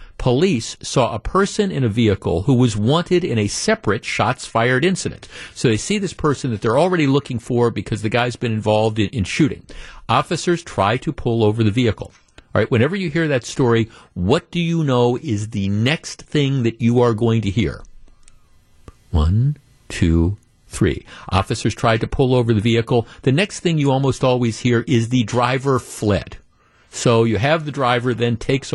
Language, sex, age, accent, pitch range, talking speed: English, male, 50-69, American, 115-150 Hz, 185 wpm